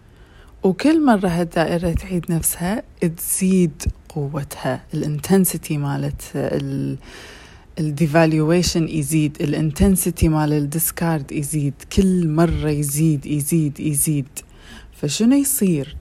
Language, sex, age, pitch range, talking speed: Arabic, female, 20-39, 150-185 Hz, 85 wpm